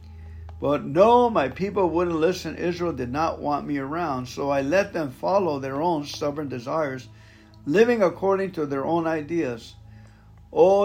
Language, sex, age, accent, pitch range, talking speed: English, male, 60-79, American, 110-170 Hz, 155 wpm